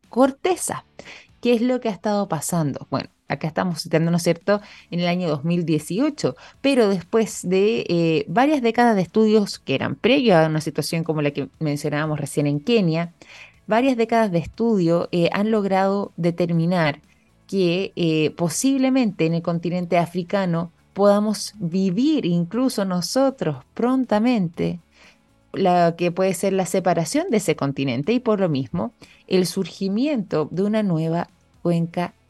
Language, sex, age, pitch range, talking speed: Spanish, female, 20-39, 160-215 Hz, 145 wpm